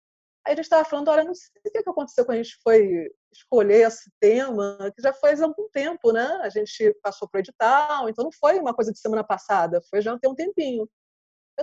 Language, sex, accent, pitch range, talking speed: Portuguese, female, Brazilian, 230-300 Hz, 230 wpm